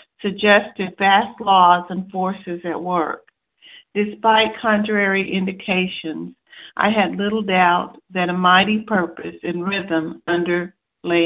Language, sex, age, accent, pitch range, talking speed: English, female, 50-69, American, 175-200 Hz, 110 wpm